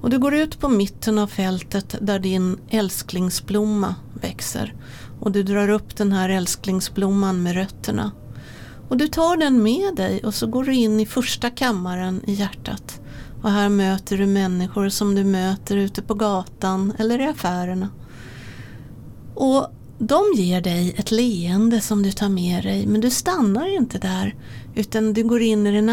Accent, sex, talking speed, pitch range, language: native, female, 170 wpm, 185-220 Hz, Swedish